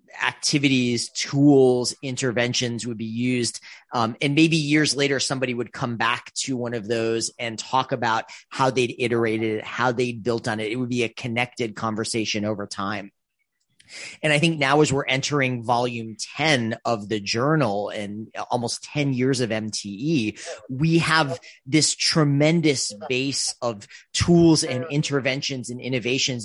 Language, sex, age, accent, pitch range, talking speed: English, male, 30-49, American, 110-135 Hz, 155 wpm